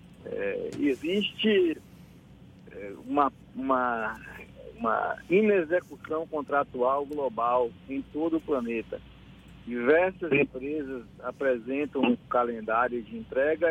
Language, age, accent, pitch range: Portuguese, 50-69, Brazilian, 125-165 Hz